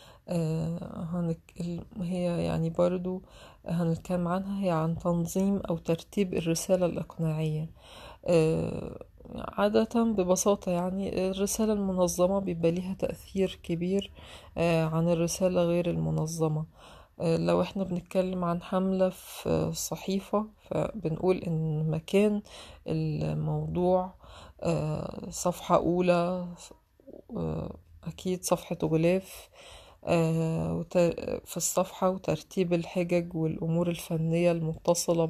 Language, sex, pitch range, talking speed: Arabic, female, 165-185 Hz, 90 wpm